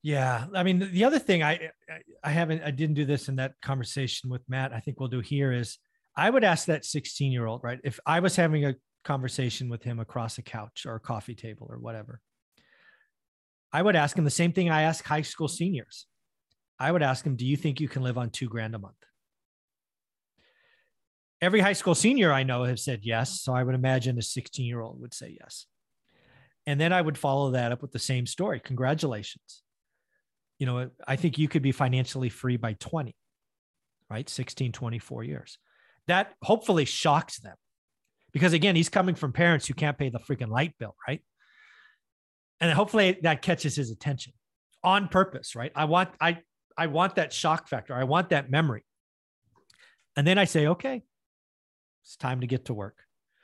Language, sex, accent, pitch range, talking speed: English, male, American, 125-165 Hz, 195 wpm